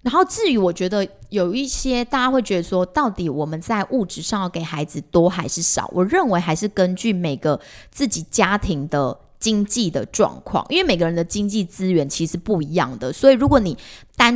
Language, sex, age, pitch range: Chinese, female, 20-39, 170-220 Hz